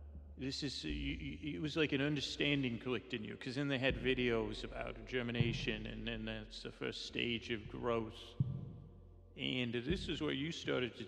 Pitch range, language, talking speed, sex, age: 85-125 Hz, English, 180 wpm, male, 40-59